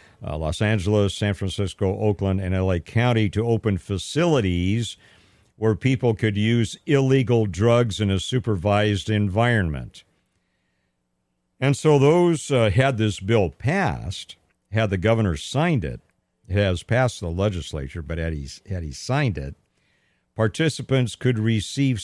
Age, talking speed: 50-69, 135 wpm